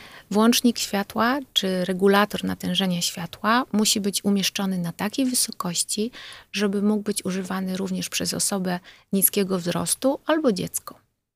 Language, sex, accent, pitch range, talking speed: Polish, female, native, 185-215 Hz, 120 wpm